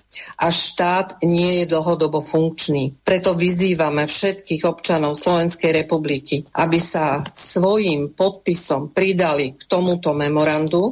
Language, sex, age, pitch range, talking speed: Slovak, female, 40-59, 145-170 Hz, 110 wpm